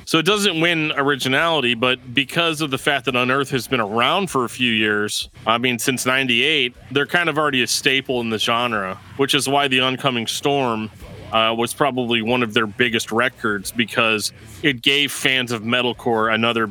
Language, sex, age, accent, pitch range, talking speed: English, male, 30-49, American, 115-140 Hz, 190 wpm